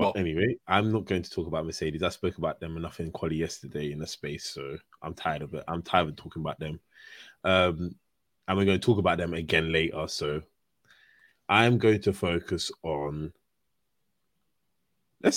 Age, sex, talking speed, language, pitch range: 20-39, male, 185 wpm, English, 85-100 Hz